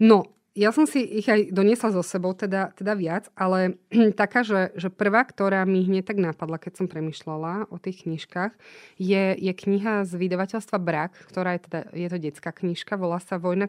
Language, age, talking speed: Slovak, 30-49, 195 wpm